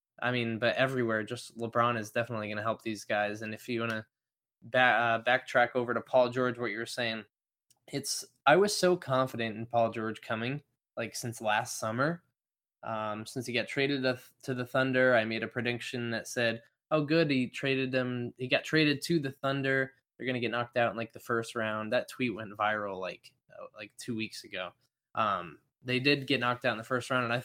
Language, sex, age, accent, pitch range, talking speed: English, male, 20-39, American, 115-130 Hz, 220 wpm